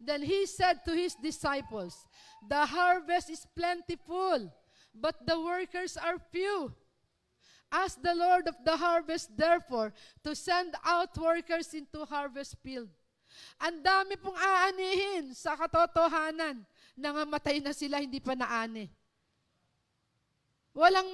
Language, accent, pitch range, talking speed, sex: Filipino, native, 295-365 Hz, 120 wpm, female